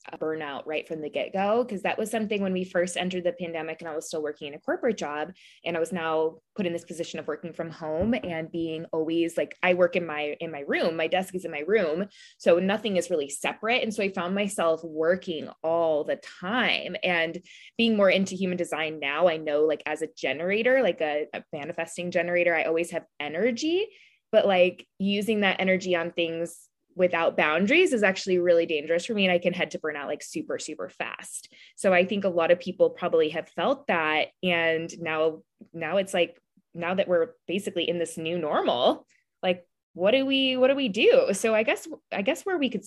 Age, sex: 20-39, female